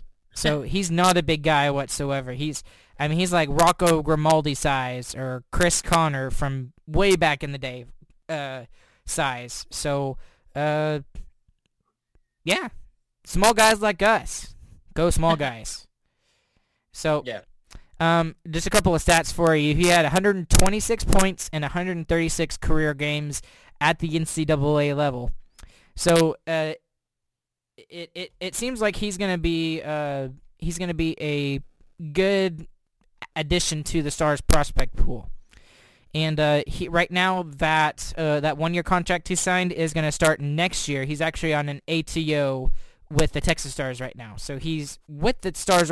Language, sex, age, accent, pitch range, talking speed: English, male, 20-39, American, 145-170 Hz, 150 wpm